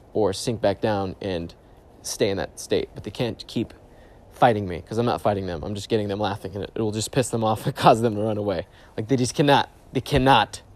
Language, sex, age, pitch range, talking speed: English, male, 20-39, 100-130 Hz, 245 wpm